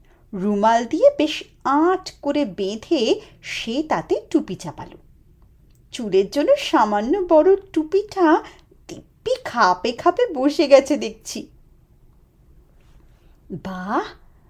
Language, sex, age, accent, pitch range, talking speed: Bengali, female, 30-49, native, 220-365 Hz, 90 wpm